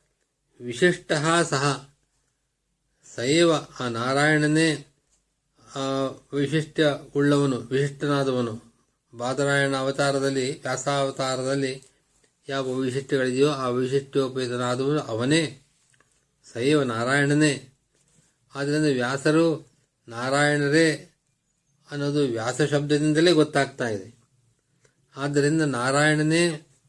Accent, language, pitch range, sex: native, Kannada, 130-150 Hz, male